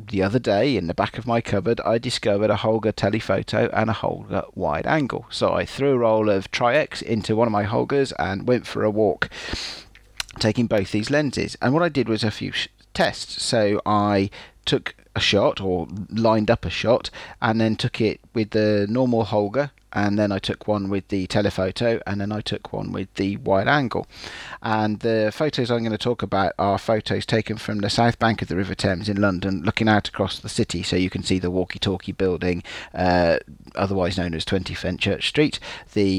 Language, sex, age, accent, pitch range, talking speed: English, male, 40-59, British, 95-115 Hz, 205 wpm